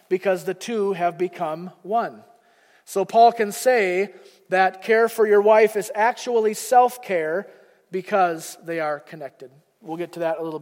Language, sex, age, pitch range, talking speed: English, male, 30-49, 180-225 Hz, 165 wpm